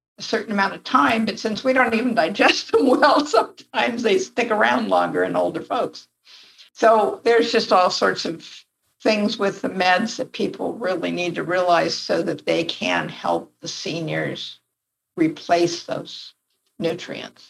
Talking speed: 160 wpm